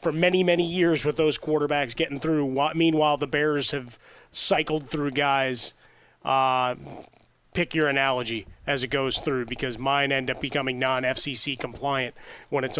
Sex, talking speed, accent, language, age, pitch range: male, 155 wpm, American, English, 30-49, 130-160 Hz